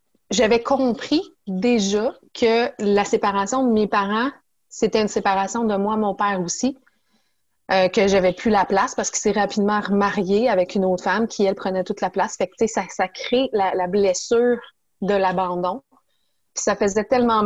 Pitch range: 200-245 Hz